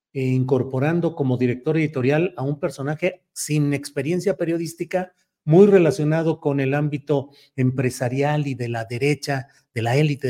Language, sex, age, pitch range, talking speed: Spanish, male, 40-59, 135-170 Hz, 135 wpm